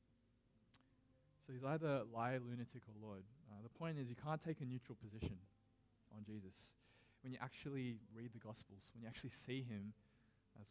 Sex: male